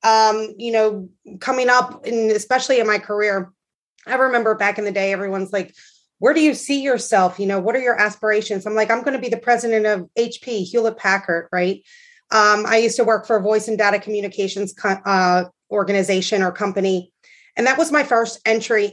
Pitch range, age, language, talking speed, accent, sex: 195-235 Hz, 30-49, English, 200 wpm, American, female